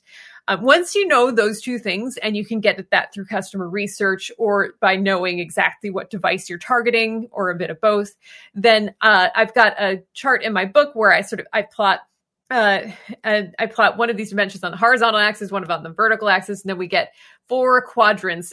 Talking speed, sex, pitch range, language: 225 wpm, female, 195-235 Hz, English